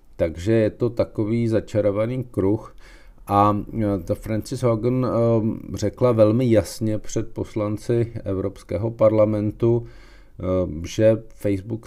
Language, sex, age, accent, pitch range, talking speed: Czech, male, 50-69, native, 100-115 Hz, 90 wpm